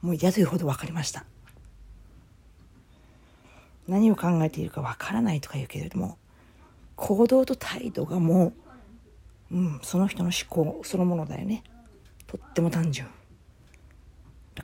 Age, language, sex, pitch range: 40-59, Japanese, female, 110-180 Hz